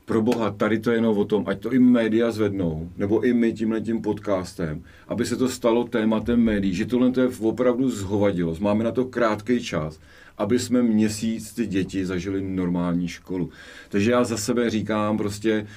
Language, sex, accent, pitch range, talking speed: English, male, Czech, 95-115 Hz, 190 wpm